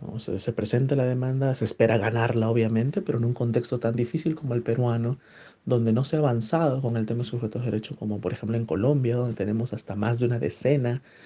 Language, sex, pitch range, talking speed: Spanish, male, 115-140 Hz, 225 wpm